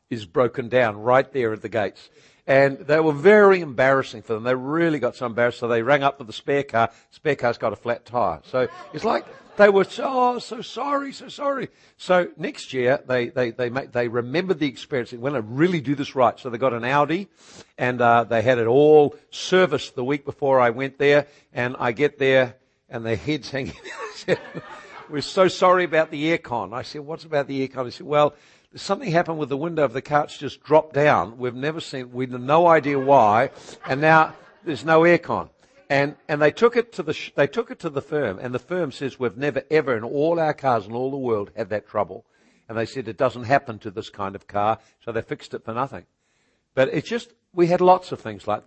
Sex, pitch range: male, 125-160 Hz